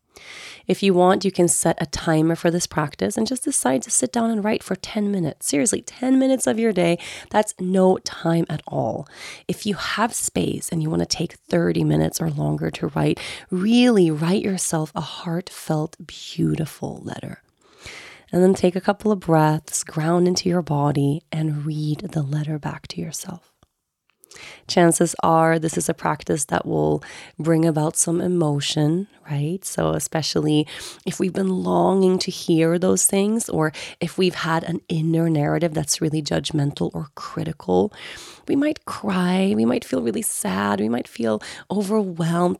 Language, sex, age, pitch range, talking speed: English, female, 30-49, 150-190 Hz, 170 wpm